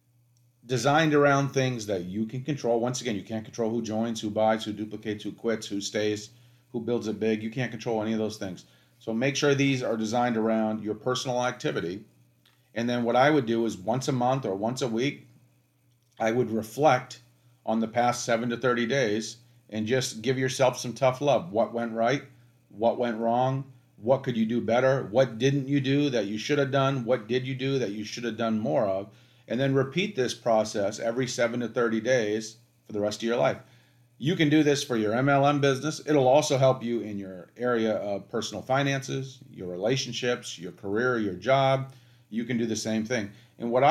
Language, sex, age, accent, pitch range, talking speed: English, male, 40-59, American, 110-130 Hz, 210 wpm